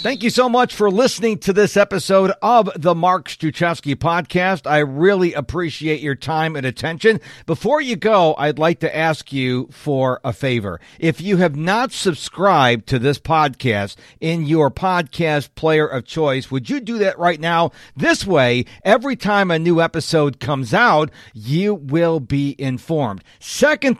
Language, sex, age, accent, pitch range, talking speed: English, male, 50-69, American, 145-210 Hz, 165 wpm